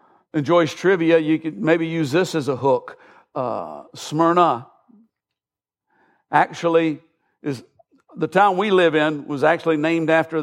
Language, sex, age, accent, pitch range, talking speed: English, male, 60-79, American, 135-165 Hz, 130 wpm